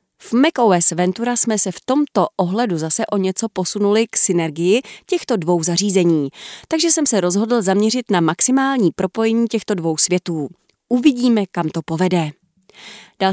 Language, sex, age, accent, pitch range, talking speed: Czech, female, 30-49, native, 180-225 Hz, 150 wpm